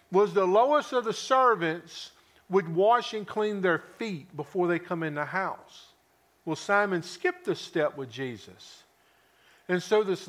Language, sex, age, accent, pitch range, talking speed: English, male, 50-69, American, 165-205 Hz, 165 wpm